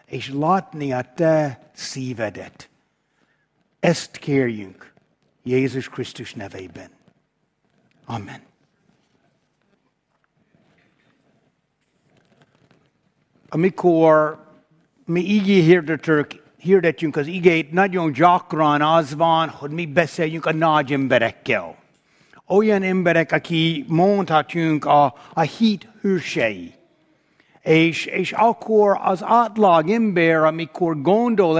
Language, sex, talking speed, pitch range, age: Hungarian, male, 85 wpm, 155-195 Hz, 60-79